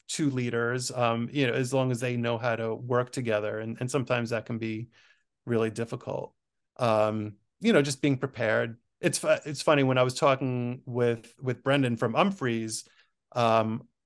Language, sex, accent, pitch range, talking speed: English, male, American, 120-145 Hz, 175 wpm